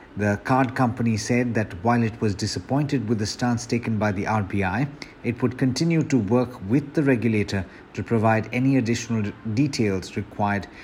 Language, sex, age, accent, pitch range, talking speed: English, male, 50-69, Indian, 110-135 Hz, 165 wpm